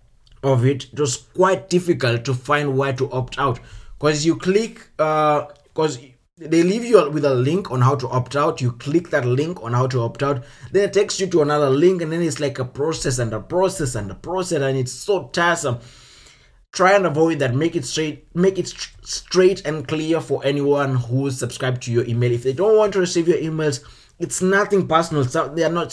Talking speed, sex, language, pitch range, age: 220 wpm, male, English, 125-165 Hz, 20-39